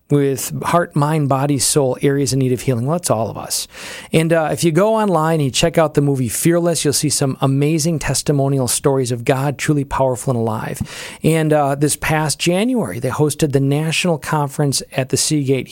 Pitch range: 135-165 Hz